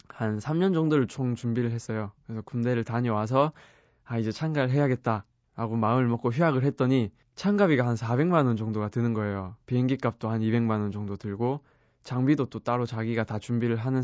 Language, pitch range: Korean, 110-135 Hz